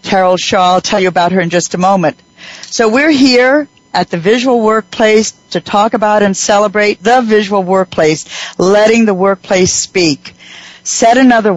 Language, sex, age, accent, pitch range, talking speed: English, female, 60-79, American, 180-210 Hz, 165 wpm